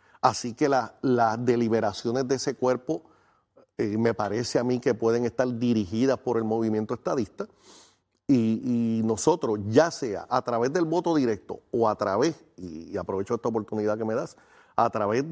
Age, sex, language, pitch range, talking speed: 40-59, male, Spanish, 115-145 Hz, 170 wpm